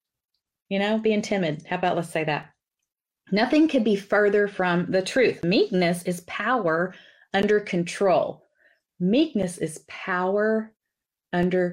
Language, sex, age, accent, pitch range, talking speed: English, female, 30-49, American, 175-210 Hz, 130 wpm